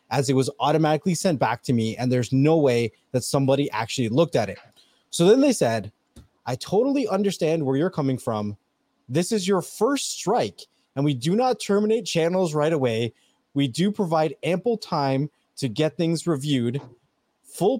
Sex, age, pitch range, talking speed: male, 30-49, 130-185 Hz, 175 wpm